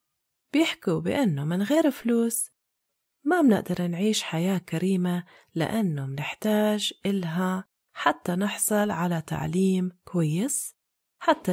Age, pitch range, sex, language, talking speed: 30-49, 170-225 Hz, female, Arabic, 100 wpm